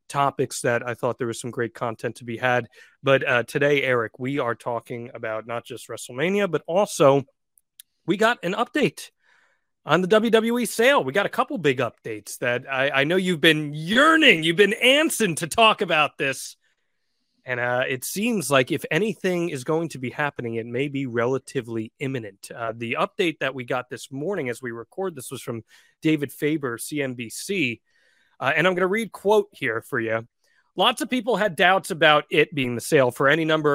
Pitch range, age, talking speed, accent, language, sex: 130-190 Hz, 30-49, 195 wpm, American, English, male